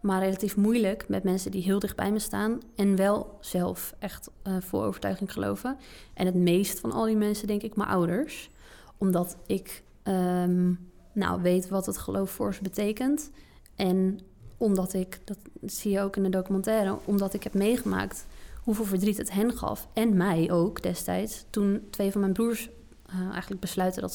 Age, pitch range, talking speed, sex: 20-39, 190-220 Hz, 175 wpm, female